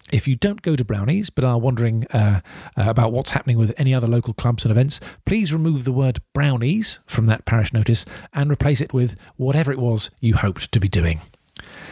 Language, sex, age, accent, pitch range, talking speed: English, male, 40-59, British, 115-145 Hz, 205 wpm